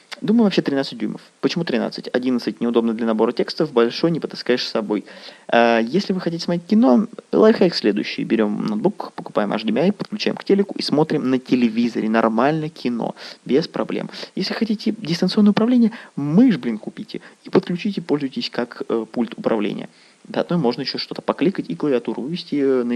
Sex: male